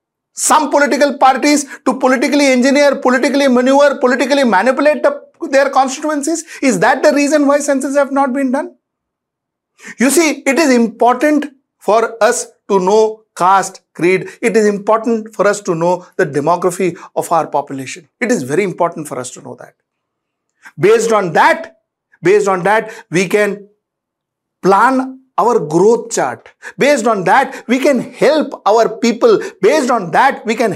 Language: English